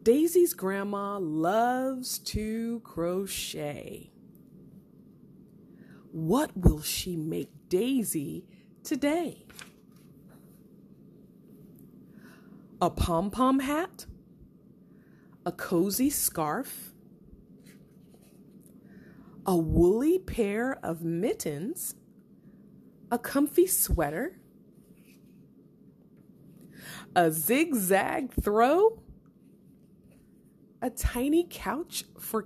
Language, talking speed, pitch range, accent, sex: English, 60 wpm, 175-260 Hz, American, female